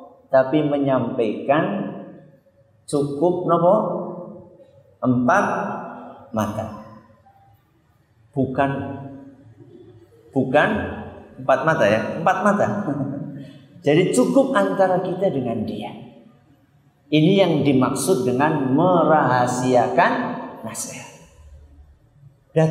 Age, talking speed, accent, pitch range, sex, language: 50-69, 70 wpm, native, 130-195 Hz, male, Indonesian